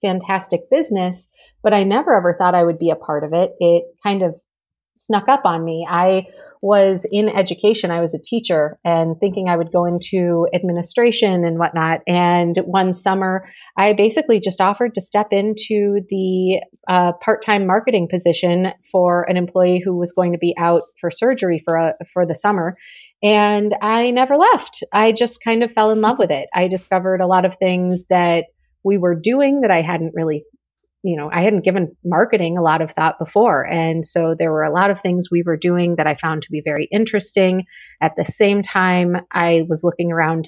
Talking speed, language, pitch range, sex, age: 195 wpm, English, 170-200 Hz, female, 30-49